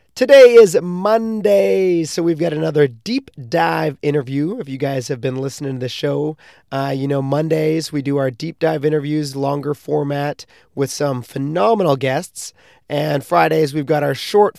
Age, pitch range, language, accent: 30-49, 145-170 Hz, English, American